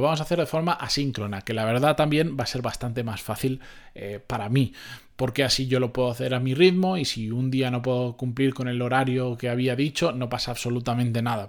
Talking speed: 235 wpm